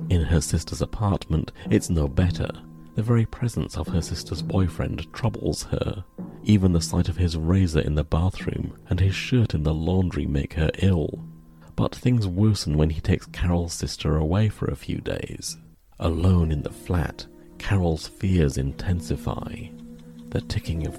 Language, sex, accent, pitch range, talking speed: English, male, British, 80-100 Hz, 165 wpm